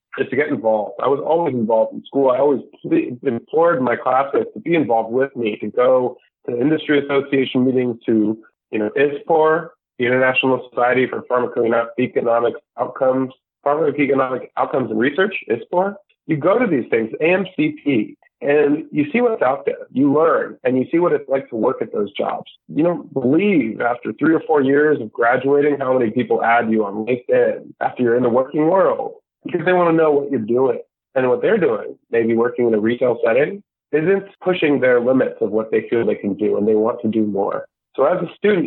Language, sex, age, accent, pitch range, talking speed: English, male, 30-49, American, 120-190 Hz, 200 wpm